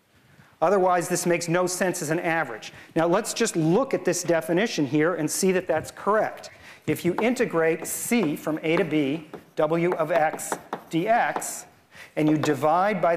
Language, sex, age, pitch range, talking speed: English, male, 40-59, 150-185 Hz, 170 wpm